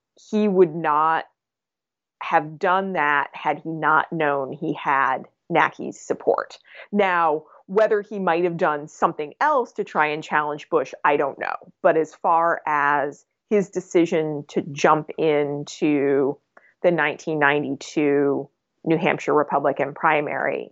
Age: 20-39